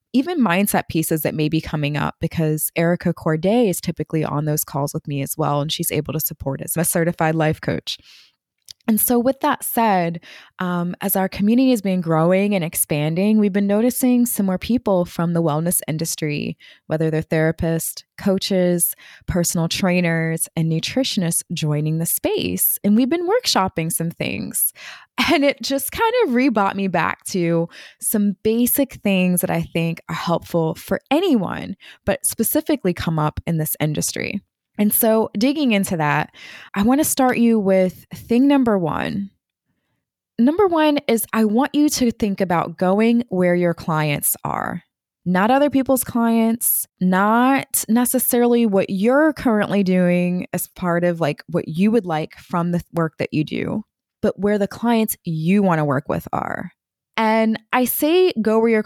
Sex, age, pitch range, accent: female, 20-39, 165-230 Hz, American